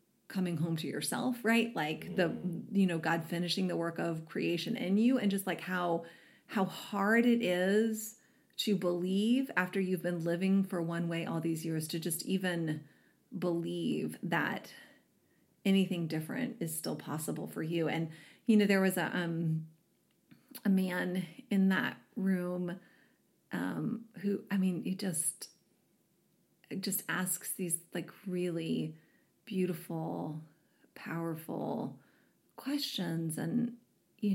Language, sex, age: English, female, 30-49